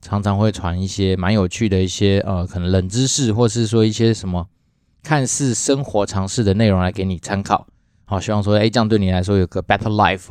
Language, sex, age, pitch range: Chinese, male, 20-39, 95-115 Hz